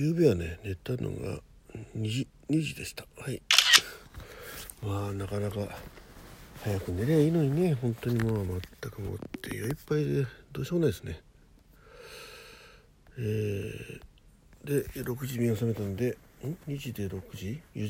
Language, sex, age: Japanese, male, 60-79